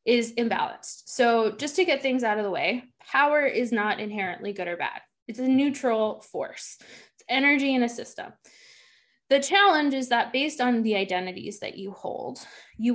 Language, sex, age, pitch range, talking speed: English, female, 20-39, 215-265 Hz, 180 wpm